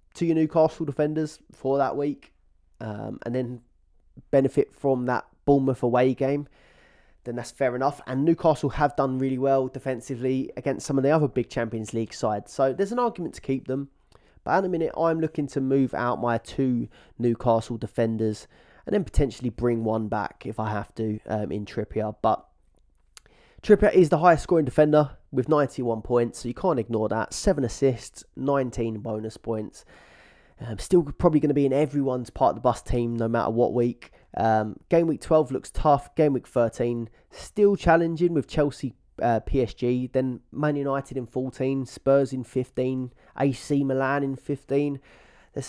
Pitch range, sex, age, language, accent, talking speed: 115-145 Hz, male, 20-39, English, British, 175 wpm